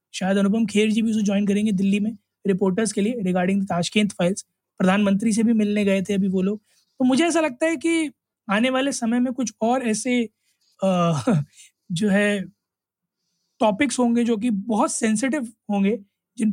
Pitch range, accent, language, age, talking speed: 200-245 Hz, native, Hindi, 20-39, 175 wpm